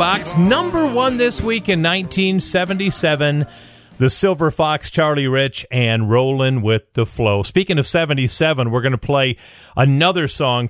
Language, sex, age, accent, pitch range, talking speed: English, male, 40-59, American, 120-165 Hz, 145 wpm